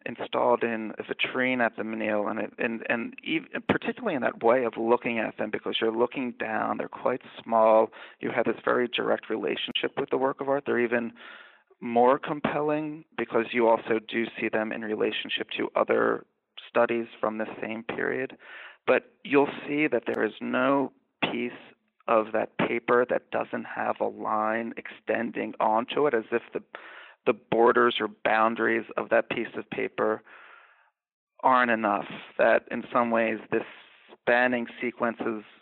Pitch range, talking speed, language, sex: 110-125 Hz, 160 wpm, English, male